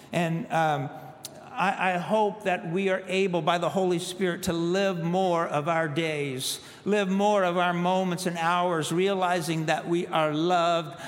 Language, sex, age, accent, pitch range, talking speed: English, male, 50-69, American, 130-170 Hz, 170 wpm